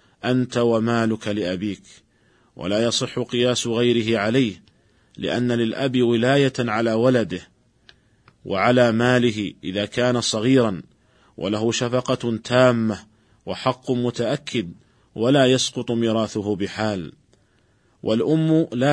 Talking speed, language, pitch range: 90 wpm, Arabic, 110-125 Hz